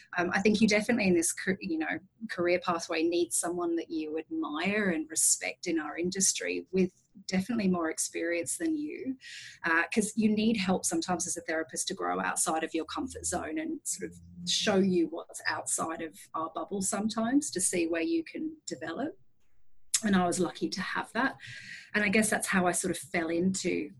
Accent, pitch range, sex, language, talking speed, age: Australian, 165-195 Hz, female, English, 195 wpm, 30-49